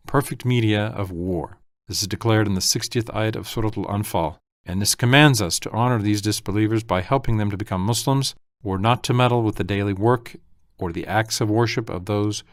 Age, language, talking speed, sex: 40-59, English, 205 wpm, male